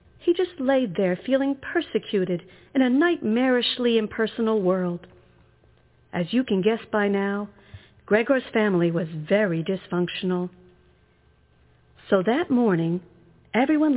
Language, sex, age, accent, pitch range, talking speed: English, female, 50-69, American, 185-290 Hz, 110 wpm